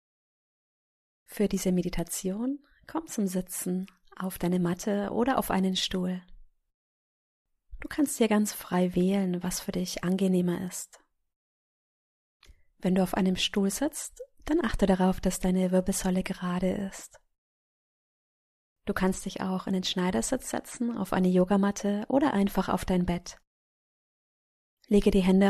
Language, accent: German, German